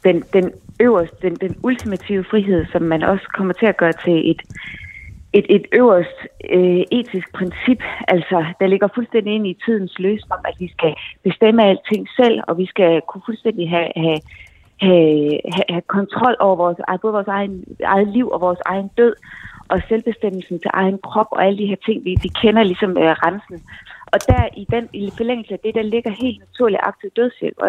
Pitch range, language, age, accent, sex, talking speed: 180-220 Hz, Danish, 30-49, native, female, 195 wpm